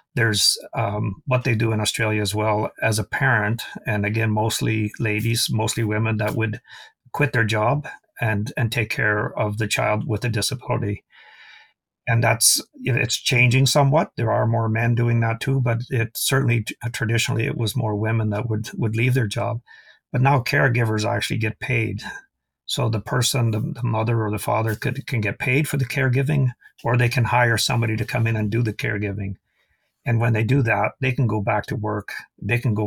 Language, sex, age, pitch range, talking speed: English, male, 50-69, 105-125 Hz, 195 wpm